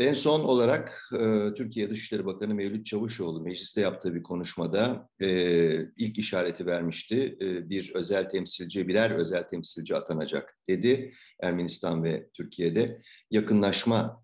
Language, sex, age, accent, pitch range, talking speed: Turkish, male, 50-69, native, 90-120 Hz, 120 wpm